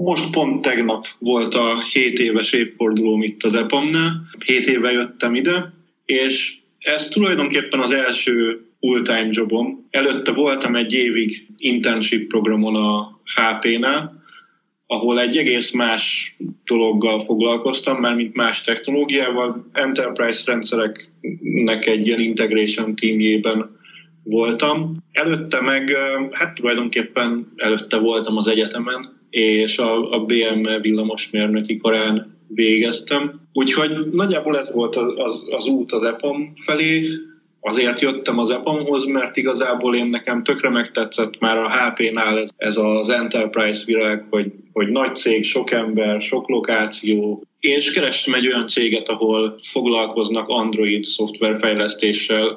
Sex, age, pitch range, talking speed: male, 20-39, 110-135 Hz, 120 wpm